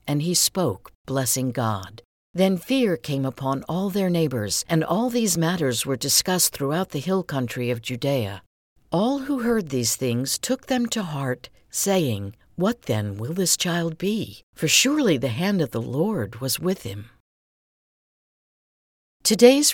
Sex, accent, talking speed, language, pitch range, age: female, American, 155 wpm, English, 130-195 Hz, 60-79